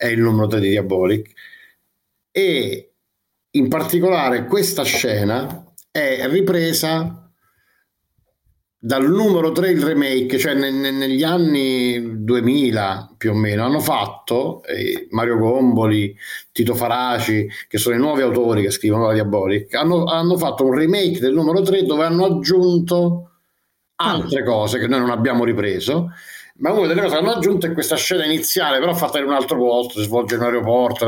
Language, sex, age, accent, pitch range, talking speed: Italian, male, 50-69, native, 115-170 Hz, 160 wpm